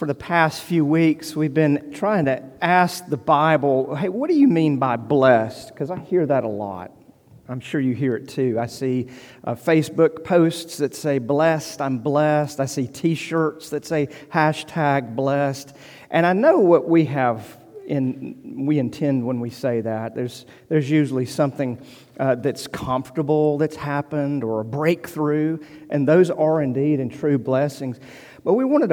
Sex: male